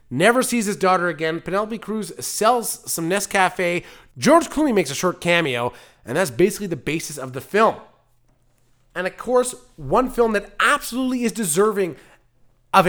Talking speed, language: 160 wpm, English